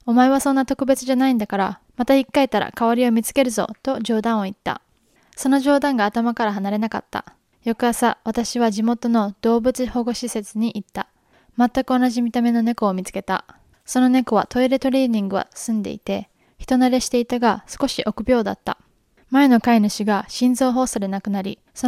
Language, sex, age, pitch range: Japanese, female, 20-39, 210-250 Hz